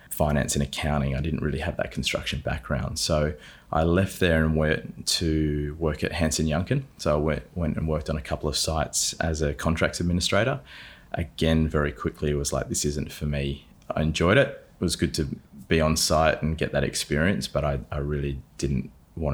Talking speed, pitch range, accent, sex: 205 wpm, 70-80 Hz, Australian, male